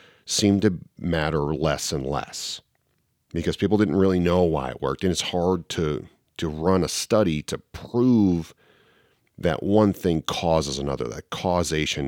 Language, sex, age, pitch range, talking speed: English, male, 40-59, 75-95 Hz, 155 wpm